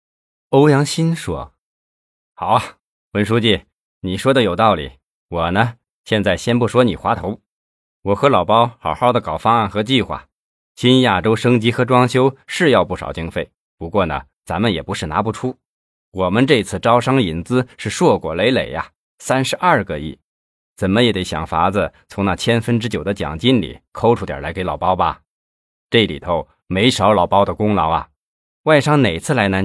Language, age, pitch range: Chinese, 20-39, 85-125 Hz